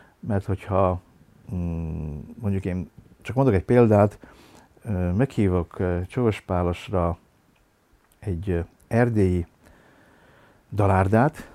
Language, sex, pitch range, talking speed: Hungarian, male, 90-115 Hz, 75 wpm